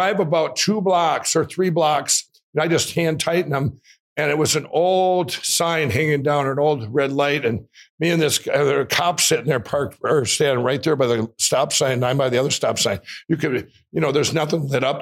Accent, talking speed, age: American, 225 wpm, 60-79